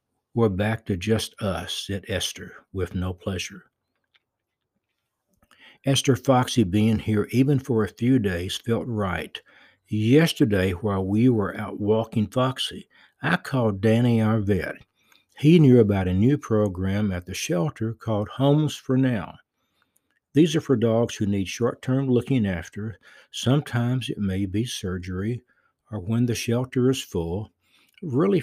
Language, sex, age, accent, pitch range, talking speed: English, male, 60-79, American, 100-130 Hz, 140 wpm